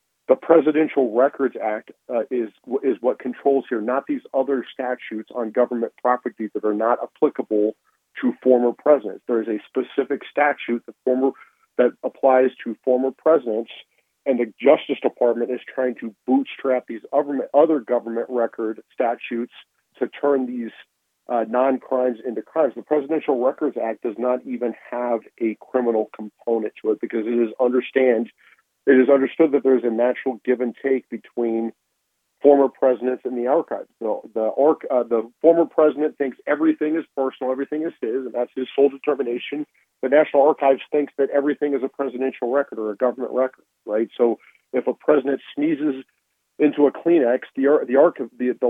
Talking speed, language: 165 wpm, English